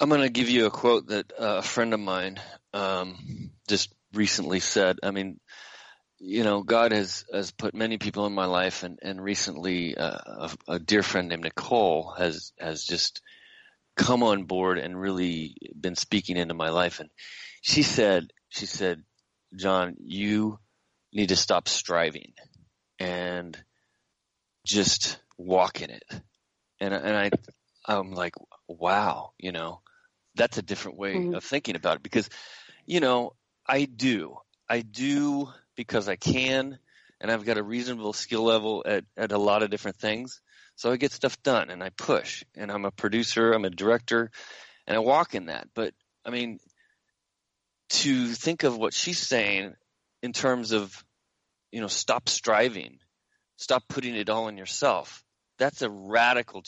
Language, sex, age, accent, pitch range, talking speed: English, male, 30-49, American, 95-120 Hz, 160 wpm